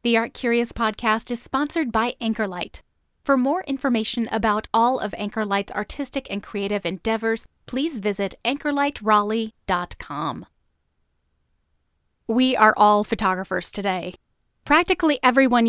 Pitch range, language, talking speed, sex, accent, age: 195-255 Hz, English, 110 wpm, female, American, 30-49